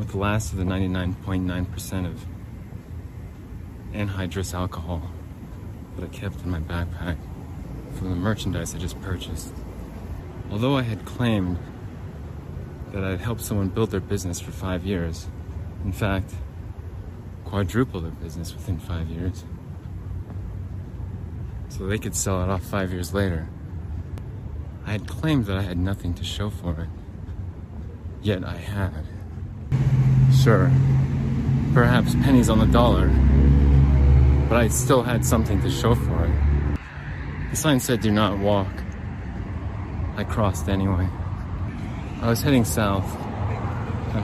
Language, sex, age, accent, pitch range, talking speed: English, male, 30-49, American, 90-105 Hz, 130 wpm